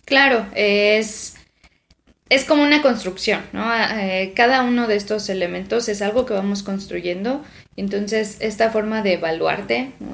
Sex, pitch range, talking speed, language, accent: female, 195-240 Hz, 140 wpm, Spanish, Mexican